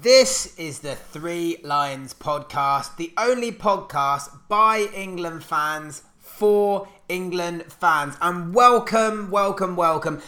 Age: 30-49